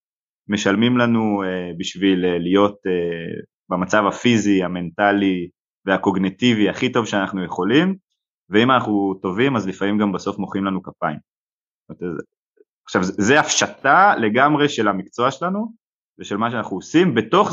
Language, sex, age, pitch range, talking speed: Hebrew, male, 30-49, 90-110 Hz, 135 wpm